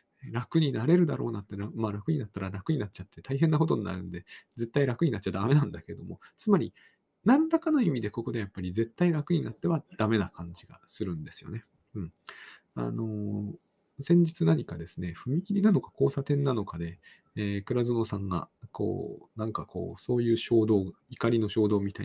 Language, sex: Japanese, male